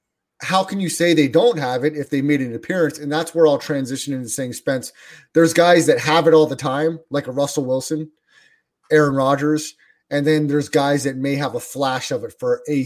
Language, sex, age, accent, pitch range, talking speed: English, male, 30-49, American, 140-165 Hz, 225 wpm